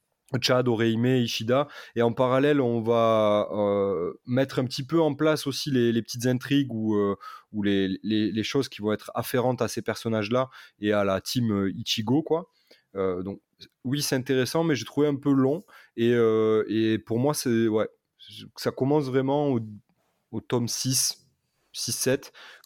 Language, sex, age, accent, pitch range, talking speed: French, male, 20-39, French, 105-130 Hz, 175 wpm